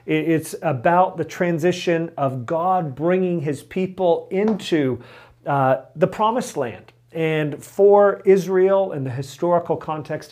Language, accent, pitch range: English, American, 135-165 Hz